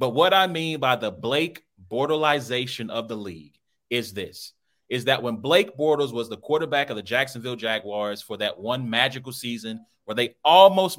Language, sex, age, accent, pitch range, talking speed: English, male, 30-49, American, 115-160 Hz, 180 wpm